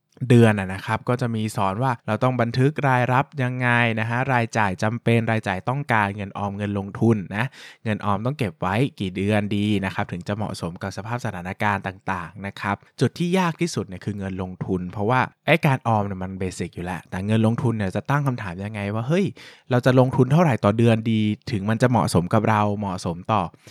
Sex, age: male, 20-39